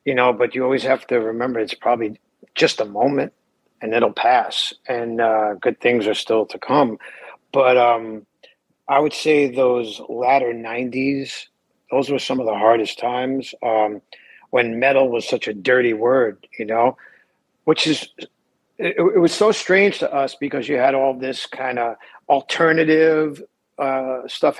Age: 50-69